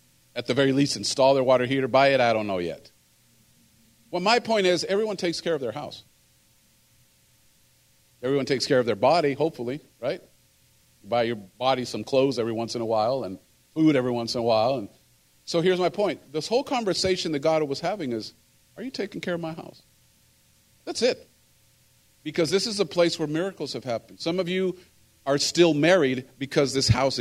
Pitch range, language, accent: 120-170 Hz, English, American